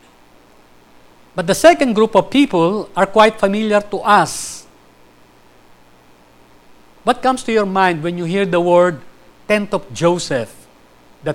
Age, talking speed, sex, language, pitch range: 50-69, 130 wpm, male, English, 155-220 Hz